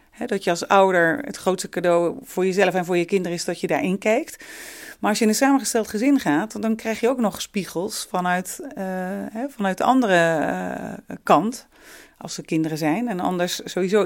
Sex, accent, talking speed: female, Dutch, 190 wpm